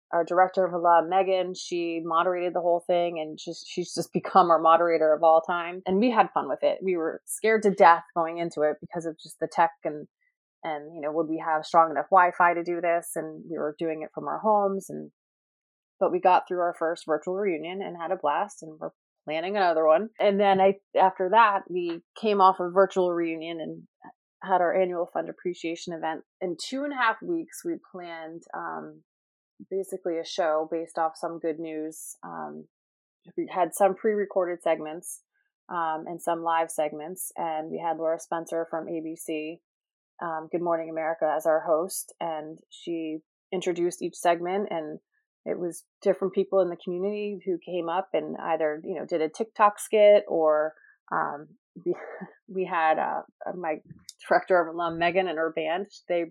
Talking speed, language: 190 wpm, English